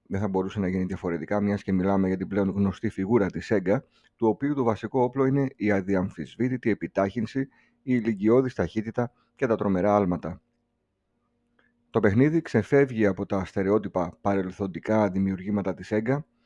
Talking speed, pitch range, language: 155 wpm, 100-120 Hz, Greek